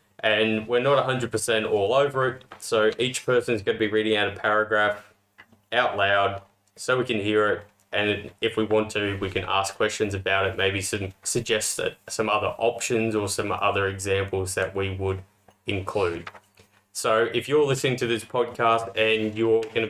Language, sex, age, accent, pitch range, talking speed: English, male, 20-39, Australian, 100-120 Hz, 195 wpm